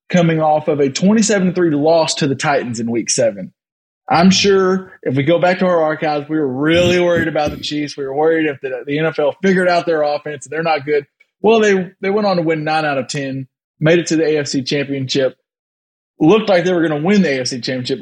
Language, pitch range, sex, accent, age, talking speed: English, 140-185 Hz, male, American, 20-39, 230 wpm